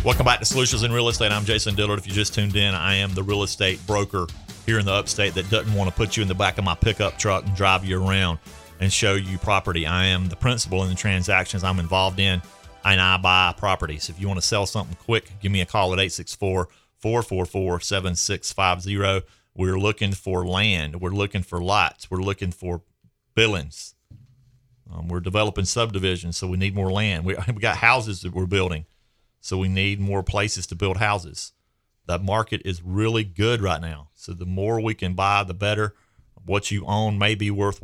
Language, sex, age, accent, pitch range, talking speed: English, male, 40-59, American, 90-105 Hz, 205 wpm